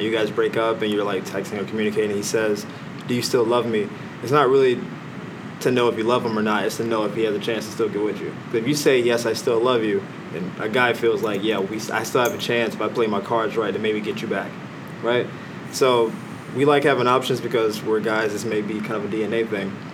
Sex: male